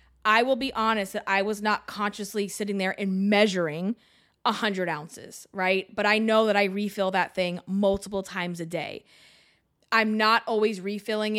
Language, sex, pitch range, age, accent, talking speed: English, female, 185-220 Hz, 20-39, American, 170 wpm